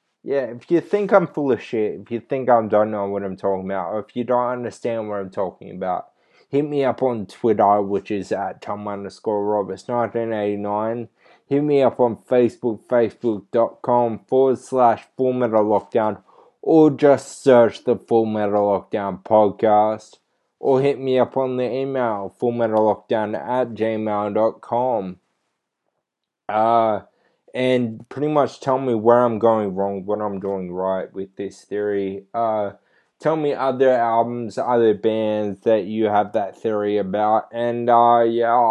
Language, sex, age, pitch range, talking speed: English, male, 20-39, 105-125 Hz, 160 wpm